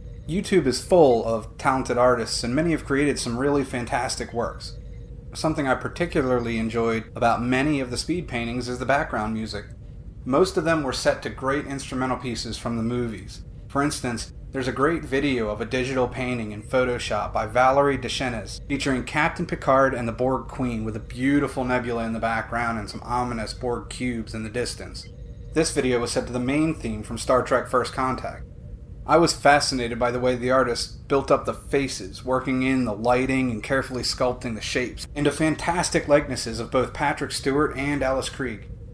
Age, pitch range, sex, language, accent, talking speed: 30-49, 115-140 Hz, male, English, American, 185 wpm